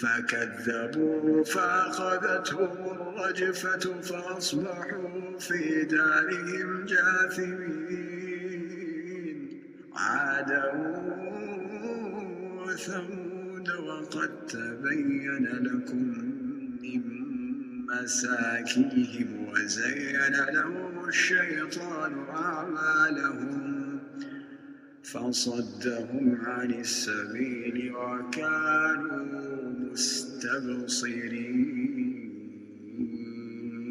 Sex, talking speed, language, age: male, 40 wpm, English, 50-69